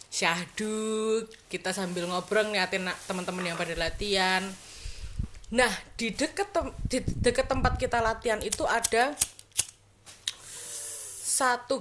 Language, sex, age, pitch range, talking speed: Indonesian, female, 20-39, 165-220 Hz, 105 wpm